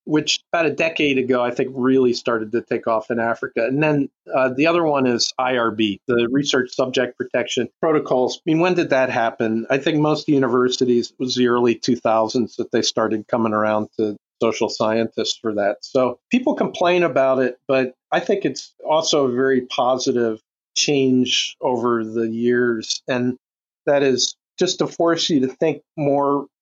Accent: American